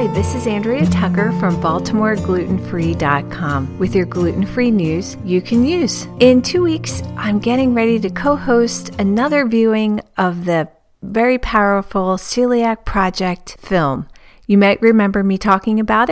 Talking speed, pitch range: 135 wpm, 190-240 Hz